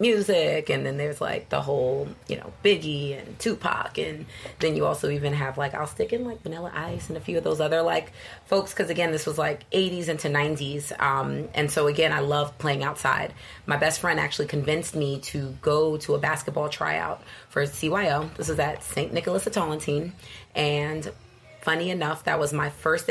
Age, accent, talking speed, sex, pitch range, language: 30-49, American, 200 wpm, female, 145-170 Hz, English